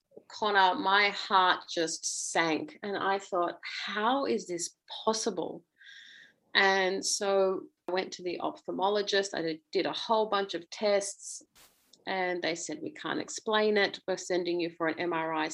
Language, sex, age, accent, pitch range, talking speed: English, female, 30-49, Australian, 185-235 Hz, 150 wpm